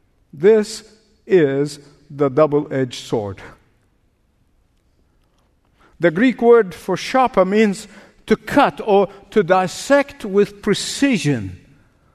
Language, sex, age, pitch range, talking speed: English, male, 50-69, 195-260 Hz, 90 wpm